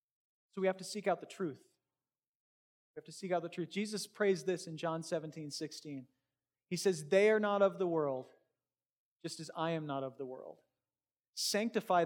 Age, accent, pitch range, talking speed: 30-49, American, 160-195 Hz, 195 wpm